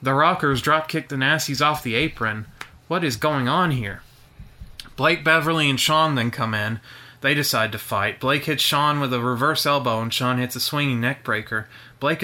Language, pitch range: English, 120-155 Hz